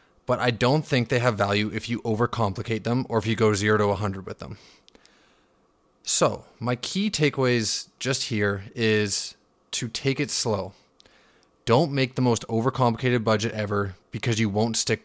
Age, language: 20-39, English